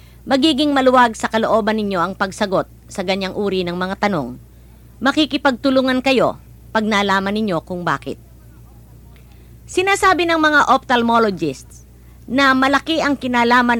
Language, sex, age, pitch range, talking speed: English, female, 50-69, 185-265 Hz, 120 wpm